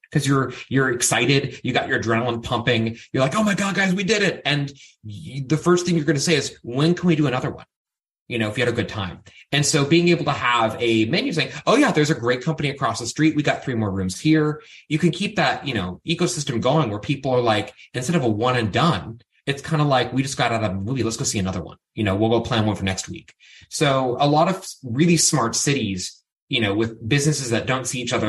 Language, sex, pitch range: English, male, 110-150 Hz